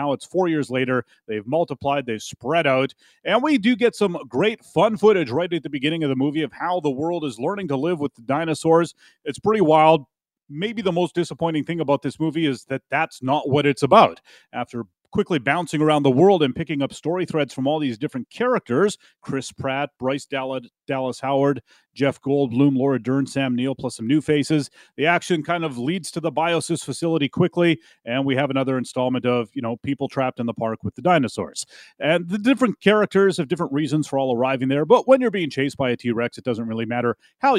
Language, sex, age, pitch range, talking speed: English, male, 30-49, 130-170 Hz, 215 wpm